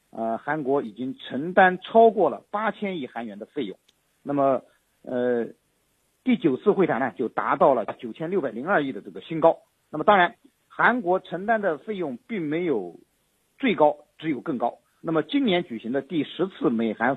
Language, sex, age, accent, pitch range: Chinese, male, 50-69, native, 120-200 Hz